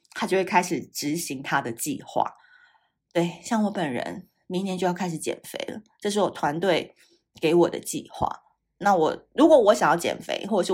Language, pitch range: Chinese, 170-250 Hz